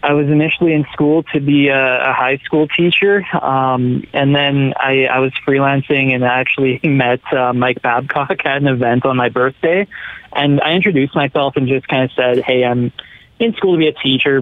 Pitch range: 130-145 Hz